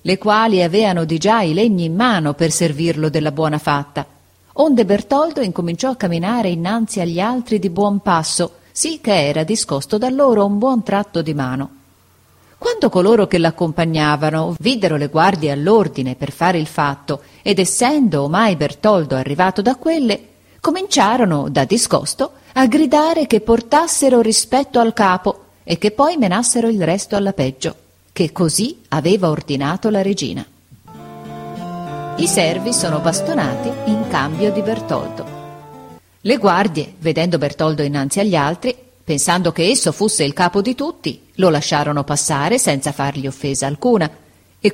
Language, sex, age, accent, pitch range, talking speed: Italian, female, 40-59, native, 155-225 Hz, 150 wpm